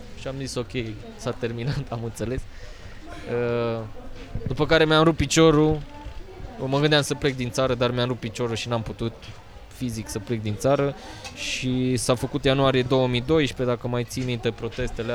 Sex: male